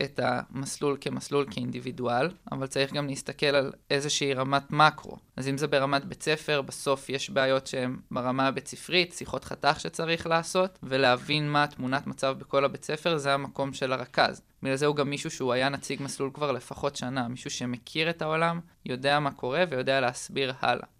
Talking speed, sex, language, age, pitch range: 175 wpm, male, Hebrew, 20-39, 130-150 Hz